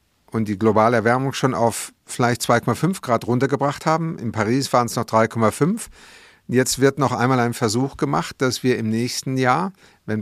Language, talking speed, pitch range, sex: German, 175 wpm, 110-135 Hz, male